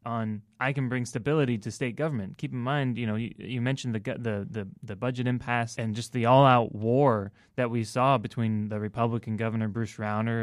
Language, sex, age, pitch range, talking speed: English, male, 20-39, 105-125 Hz, 215 wpm